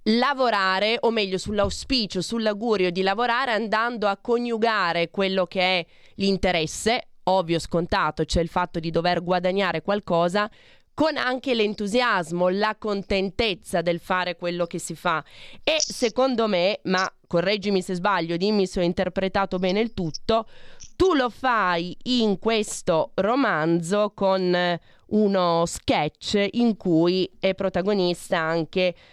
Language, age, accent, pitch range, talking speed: Italian, 20-39, native, 175-215 Hz, 130 wpm